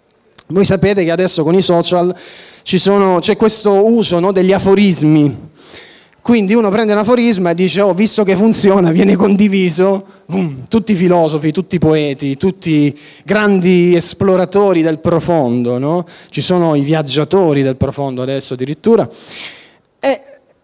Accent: native